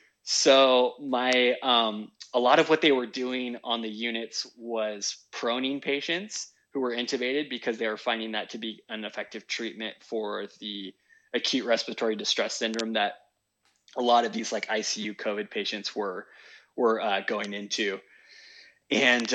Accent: American